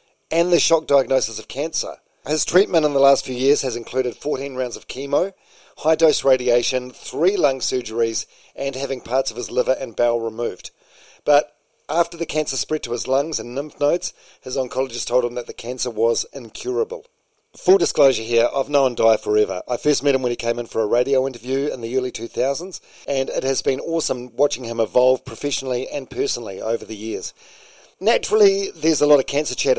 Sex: male